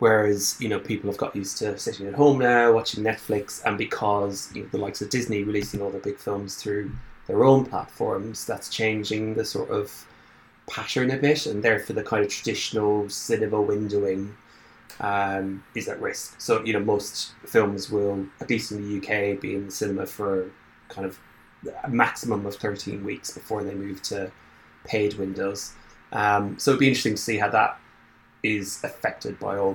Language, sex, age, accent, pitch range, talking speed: English, male, 20-39, British, 95-105 Hz, 185 wpm